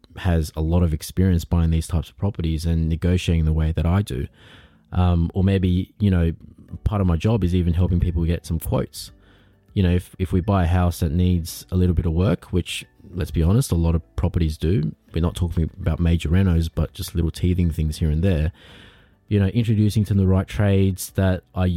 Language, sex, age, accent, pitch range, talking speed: English, male, 20-39, Australian, 85-100 Hz, 220 wpm